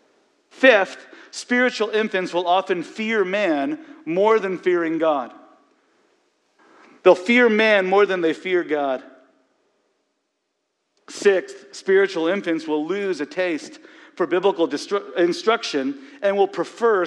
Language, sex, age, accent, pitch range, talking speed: English, male, 50-69, American, 160-245 Hz, 115 wpm